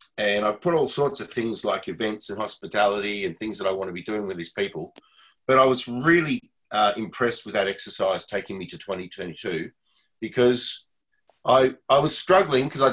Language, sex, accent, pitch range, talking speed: English, male, Australian, 105-125 Hz, 195 wpm